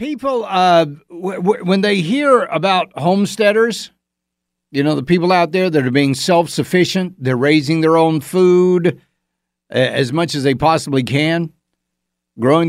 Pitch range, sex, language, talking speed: 120-180 Hz, male, English, 135 wpm